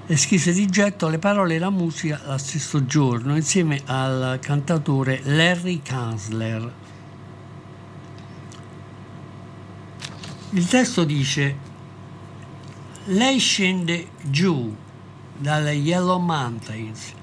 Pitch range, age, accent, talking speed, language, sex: 125-170 Hz, 60-79, native, 90 wpm, Italian, male